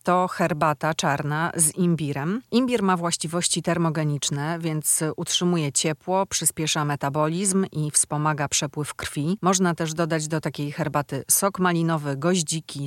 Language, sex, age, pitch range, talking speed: Polish, female, 40-59, 150-175 Hz, 125 wpm